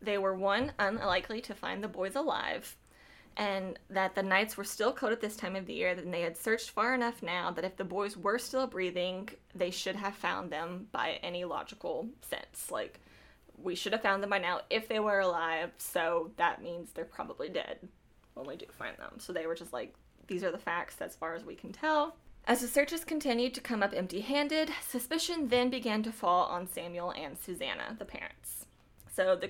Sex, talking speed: female, 210 wpm